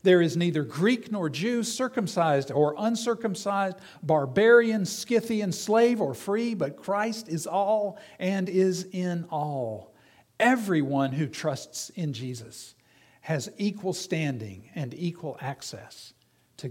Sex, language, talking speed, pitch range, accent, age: male, English, 120 wpm, 130-190 Hz, American, 50-69